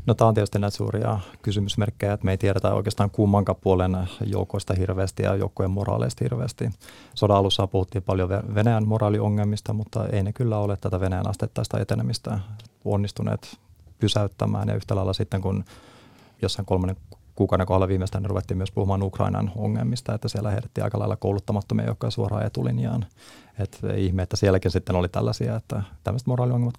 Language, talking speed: Finnish, 160 wpm